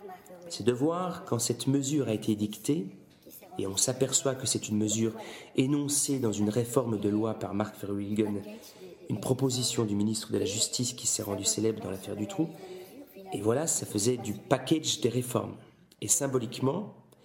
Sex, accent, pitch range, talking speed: male, French, 115-160 Hz, 175 wpm